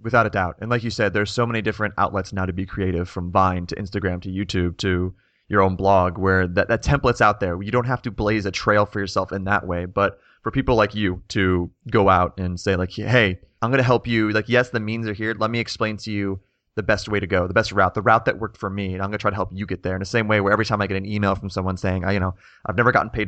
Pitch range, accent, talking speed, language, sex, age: 95-110 Hz, American, 300 wpm, English, male, 30-49